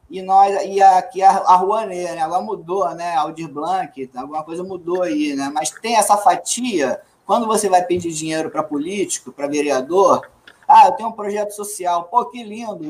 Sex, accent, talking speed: male, Brazilian, 180 wpm